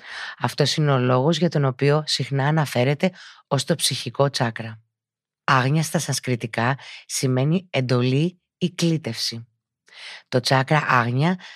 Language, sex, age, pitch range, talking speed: Greek, female, 30-49, 125-155 Hz, 120 wpm